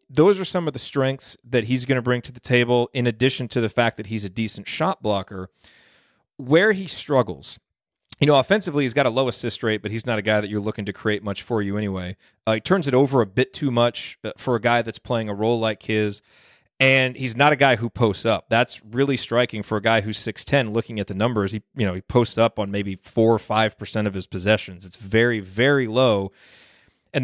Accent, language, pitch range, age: American, English, 110-130 Hz, 30-49